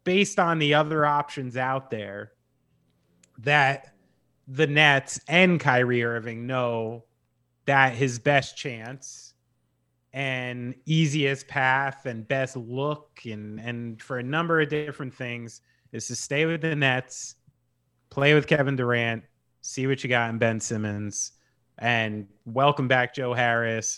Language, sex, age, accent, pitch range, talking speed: English, male, 30-49, American, 115-150 Hz, 135 wpm